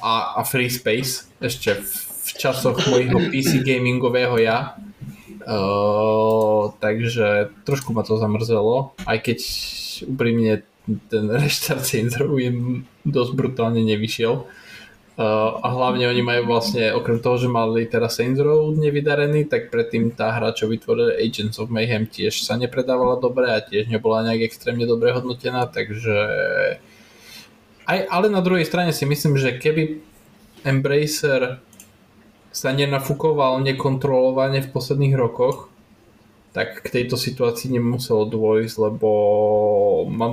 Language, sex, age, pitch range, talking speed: Slovak, male, 20-39, 110-135 Hz, 130 wpm